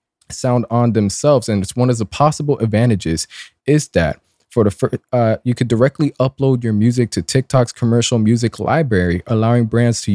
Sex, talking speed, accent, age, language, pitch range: male, 175 wpm, American, 20-39, English, 105-135 Hz